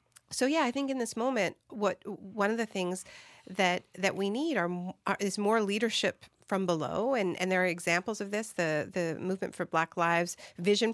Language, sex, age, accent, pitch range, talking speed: English, female, 50-69, American, 175-210 Hz, 205 wpm